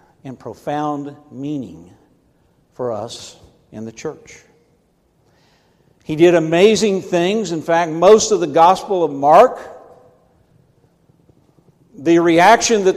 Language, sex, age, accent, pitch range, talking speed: English, male, 60-79, American, 135-175 Hz, 105 wpm